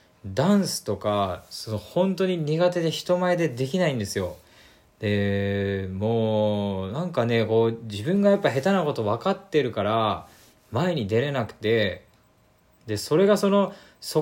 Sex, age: male, 20-39